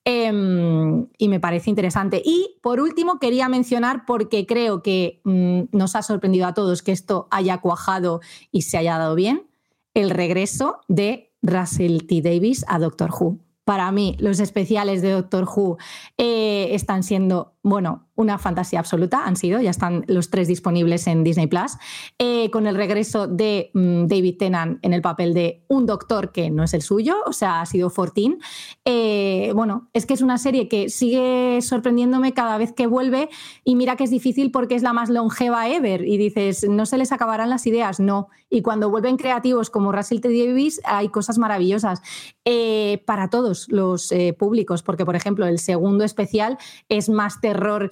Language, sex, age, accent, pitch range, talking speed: Spanish, female, 20-39, Spanish, 185-235 Hz, 180 wpm